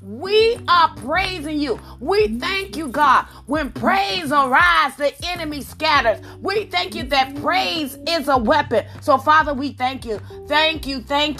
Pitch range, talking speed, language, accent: 275-350 Hz, 160 wpm, English, American